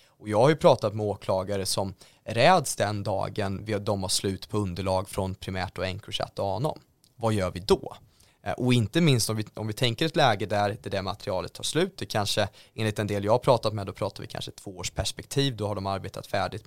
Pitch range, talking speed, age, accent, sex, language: 100-125 Hz, 225 wpm, 20-39, Swedish, male, English